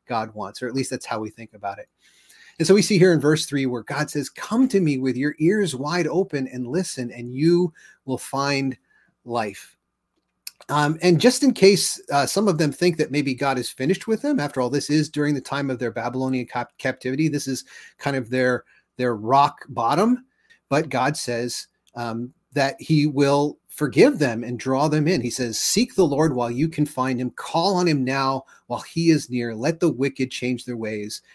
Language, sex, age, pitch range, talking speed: English, male, 30-49, 130-165 Hz, 210 wpm